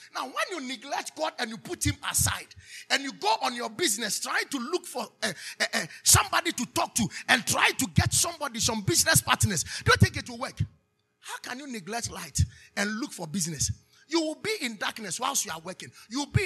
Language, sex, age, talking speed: English, male, 30-49, 220 wpm